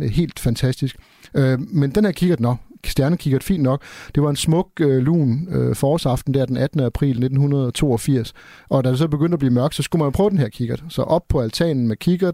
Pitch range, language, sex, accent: 125-145 Hz, Danish, male, native